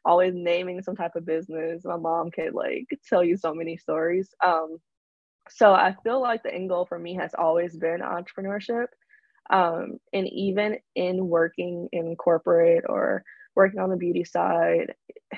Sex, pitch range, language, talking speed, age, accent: female, 170-210 Hz, English, 165 wpm, 20-39, American